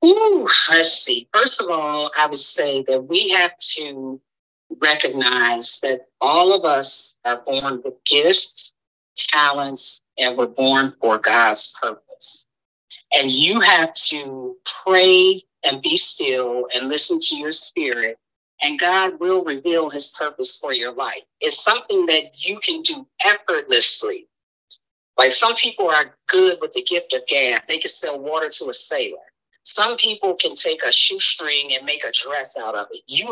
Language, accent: English, American